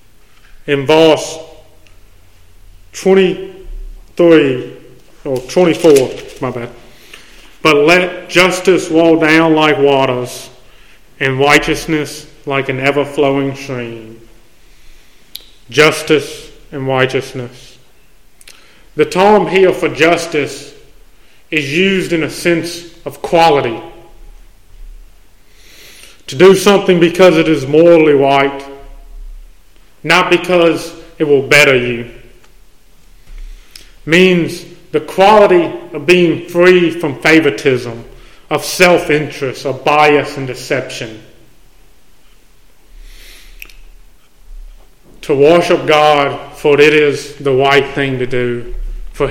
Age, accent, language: 30-49, American, English